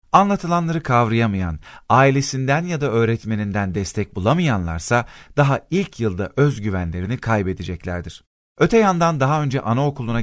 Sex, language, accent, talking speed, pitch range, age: male, Turkish, native, 105 wpm, 100-145 Hz, 40-59